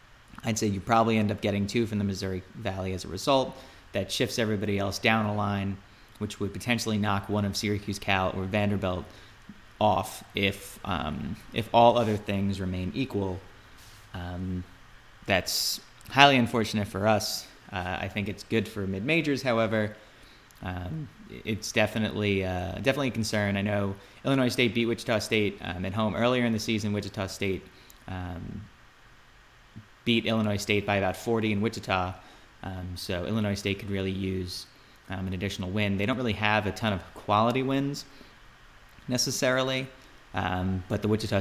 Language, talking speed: English, 160 wpm